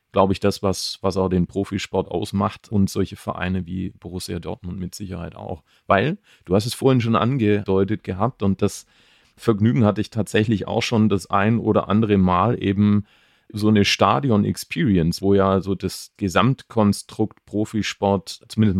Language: English